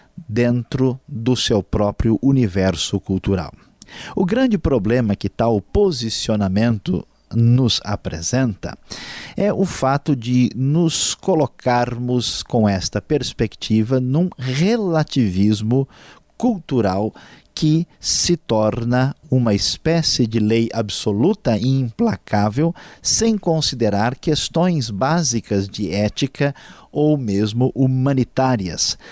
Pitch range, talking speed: 105-135 Hz, 95 wpm